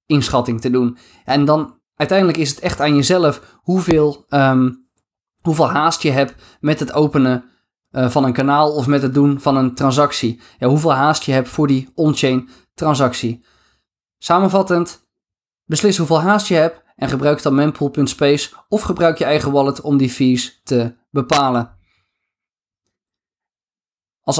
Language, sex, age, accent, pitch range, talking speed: Dutch, male, 20-39, Dutch, 135-170 Hz, 145 wpm